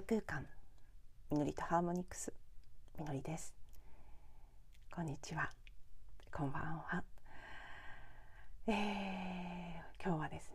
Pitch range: 160-190 Hz